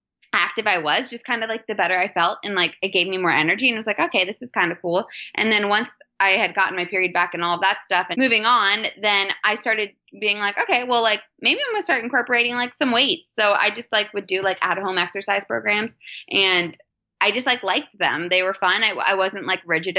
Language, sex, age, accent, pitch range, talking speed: English, female, 20-39, American, 170-215 Hz, 250 wpm